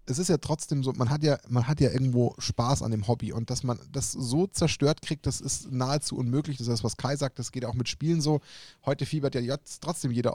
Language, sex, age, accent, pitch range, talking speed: German, male, 10-29, German, 125-155 Hz, 275 wpm